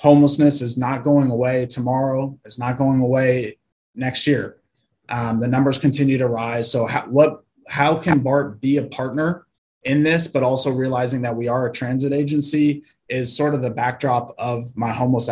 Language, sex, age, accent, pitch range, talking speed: English, male, 20-39, American, 120-140 Hz, 180 wpm